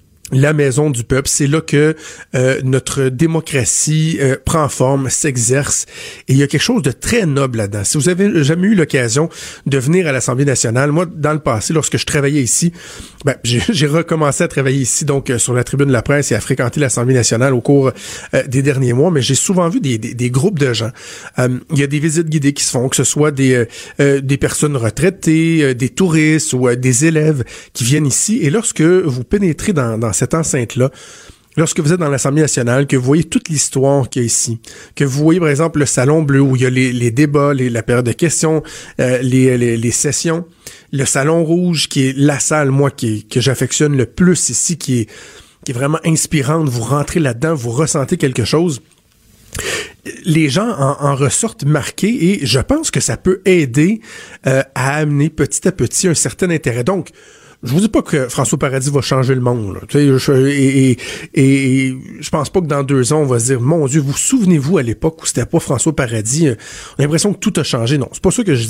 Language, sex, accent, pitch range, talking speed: French, male, Canadian, 130-160 Hz, 225 wpm